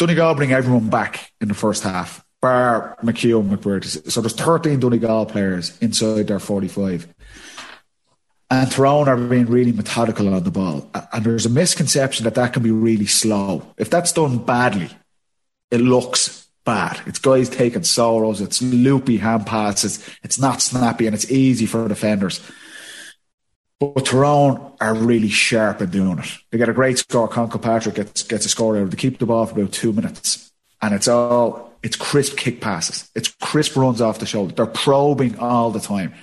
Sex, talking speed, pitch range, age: male, 175 wpm, 110-130 Hz, 30-49